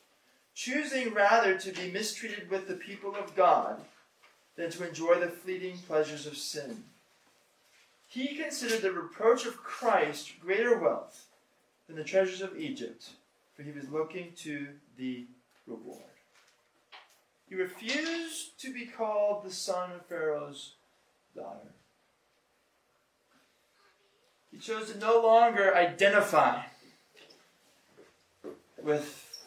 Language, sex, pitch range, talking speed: English, male, 145-220 Hz, 110 wpm